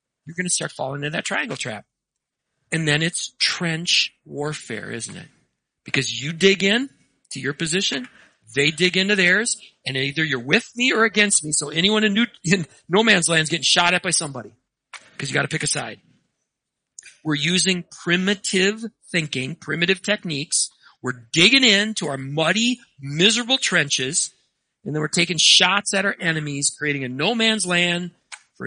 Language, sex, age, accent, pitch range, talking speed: English, male, 40-59, American, 145-205 Hz, 170 wpm